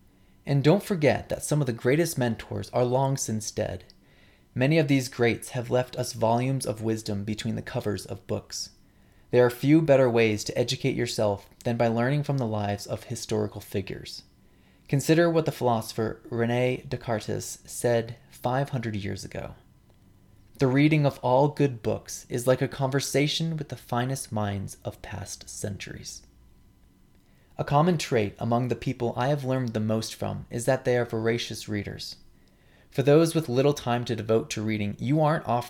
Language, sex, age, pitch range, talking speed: English, male, 20-39, 110-135 Hz, 170 wpm